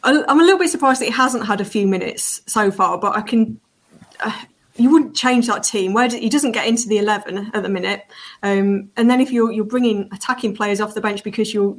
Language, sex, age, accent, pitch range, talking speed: English, female, 20-39, British, 195-230 Hz, 245 wpm